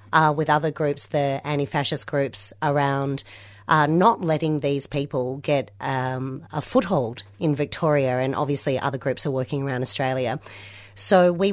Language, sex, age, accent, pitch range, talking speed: English, female, 40-59, Australian, 135-175 Hz, 150 wpm